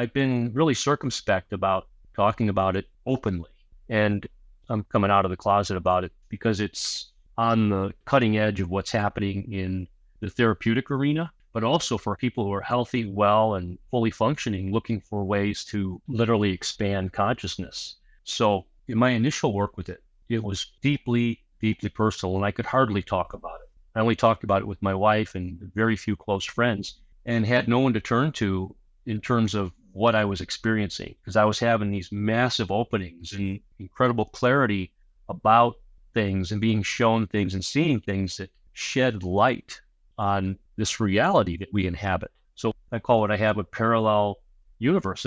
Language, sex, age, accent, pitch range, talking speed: English, male, 40-59, American, 95-115 Hz, 175 wpm